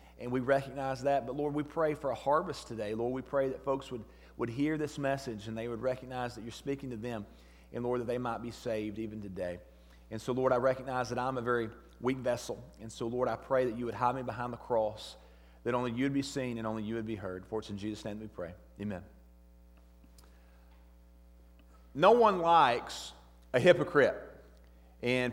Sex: male